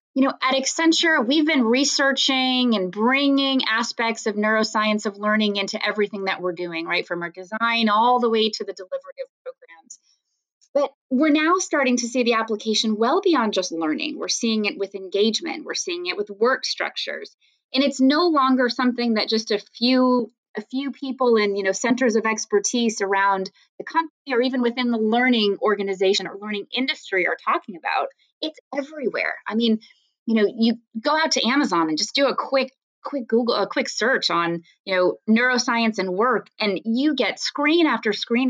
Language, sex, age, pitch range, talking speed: English, female, 20-39, 205-270 Hz, 185 wpm